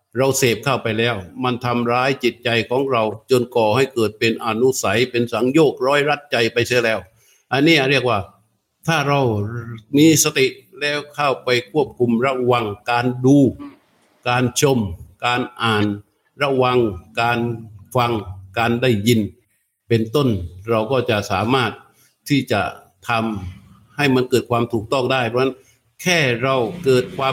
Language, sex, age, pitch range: Thai, male, 60-79, 115-145 Hz